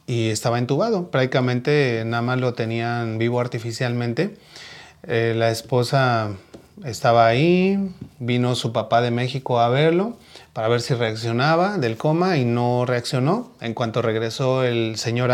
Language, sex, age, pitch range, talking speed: Spanish, male, 30-49, 115-135 Hz, 140 wpm